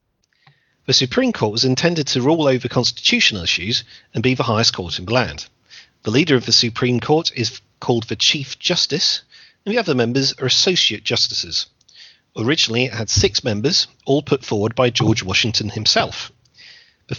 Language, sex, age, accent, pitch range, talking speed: English, male, 40-59, British, 110-145 Hz, 170 wpm